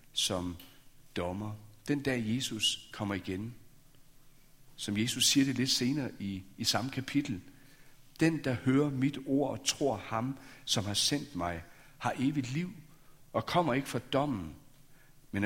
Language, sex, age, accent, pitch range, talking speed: Danish, male, 60-79, native, 115-140 Hz, 150 wpm